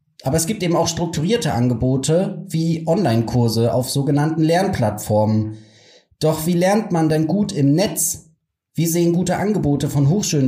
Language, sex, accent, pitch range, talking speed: German, male, German, 125-165 Hz, 150 wpm